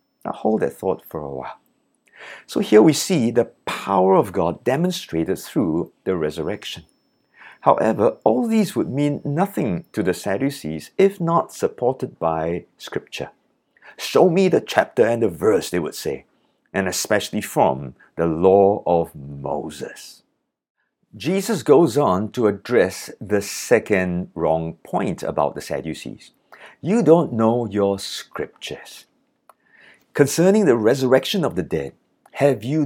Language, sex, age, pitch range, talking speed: English, male, 50-69, 95-155 Hz, 135 wpm